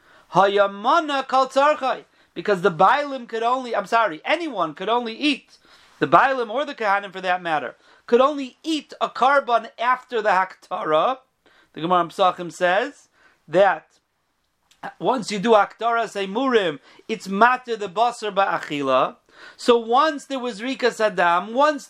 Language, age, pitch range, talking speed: English, 40-59, 200-270 Hz, 135 wpm